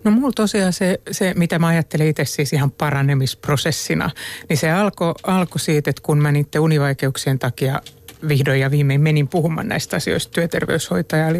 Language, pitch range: Finnish, 145-170 Hz